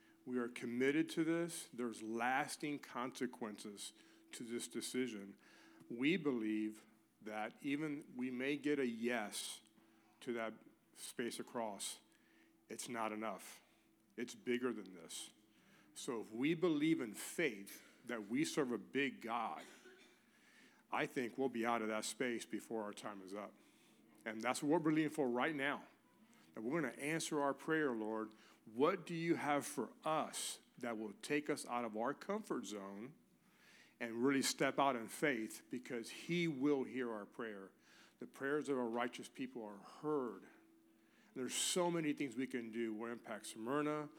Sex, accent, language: male, American, English